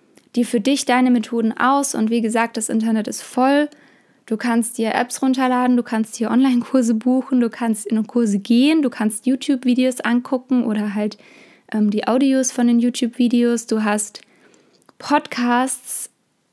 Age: 20-39